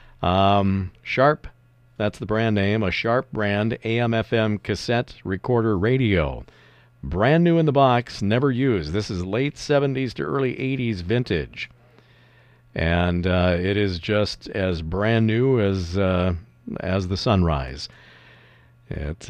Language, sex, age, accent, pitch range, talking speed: English, male, 50-69, American, 90-120 Hz, 130 wpm